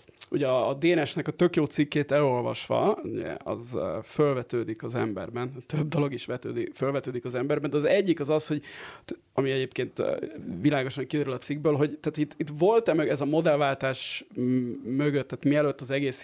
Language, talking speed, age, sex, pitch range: Hungarian, 175 wpm, 30-49, male, 125-155 Hz